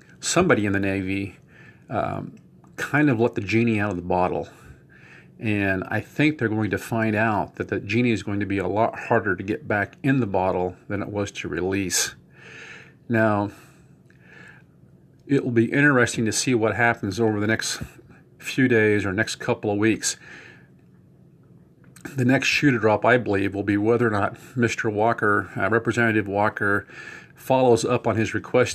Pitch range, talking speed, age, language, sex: 100-120 Hz, 175 wpm, 40-59, English, male